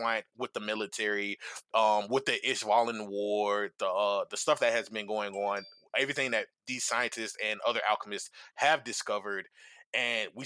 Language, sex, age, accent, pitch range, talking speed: English, male, 20-39, American, 105-140 Hz, 160 wpm